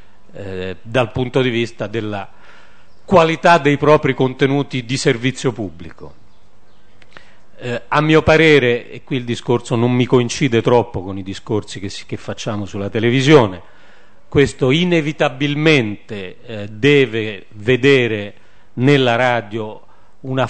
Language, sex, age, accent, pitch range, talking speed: Italian, male, 40-59, native, 105-140 Hz, 115 wpm